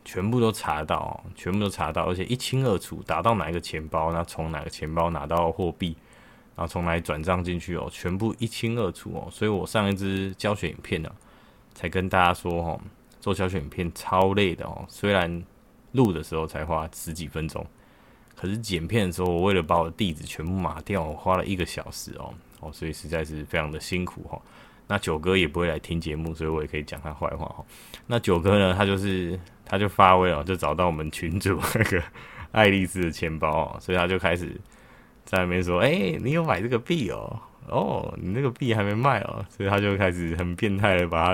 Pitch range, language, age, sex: 85-105 Hz, Chinese, 20-39, male